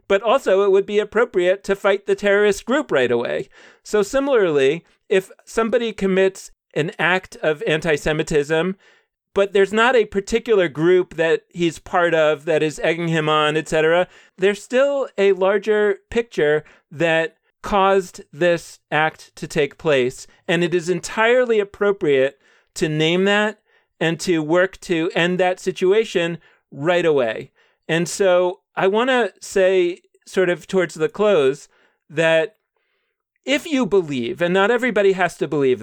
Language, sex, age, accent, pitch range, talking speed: English, male, 40-59, American, 160-210 Hz, 145 wpm